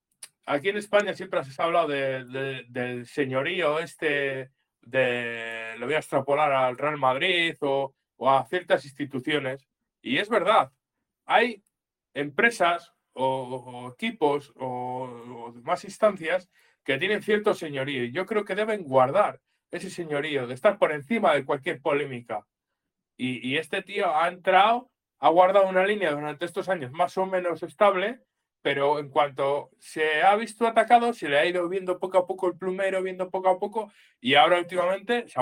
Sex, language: male, Spanish